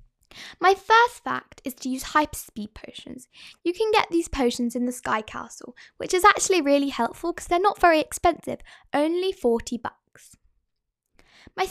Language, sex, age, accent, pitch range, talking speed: English, female, 10-29, British, 240-335 Hz, 160 wpm